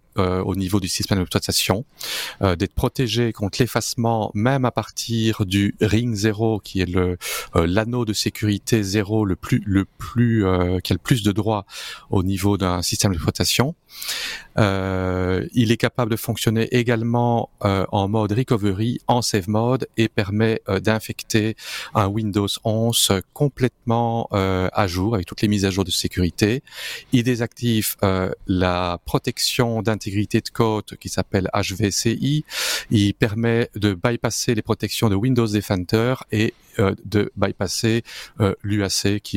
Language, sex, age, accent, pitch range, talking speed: French, male, 40-59, French, 95-115 Hz, 155 wpm